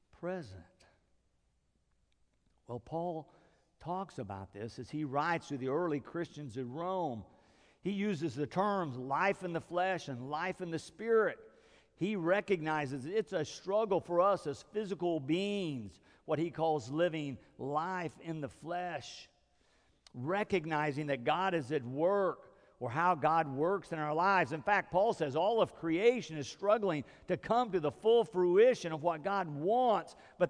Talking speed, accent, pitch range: 155 wpm, American, 135-185 Hz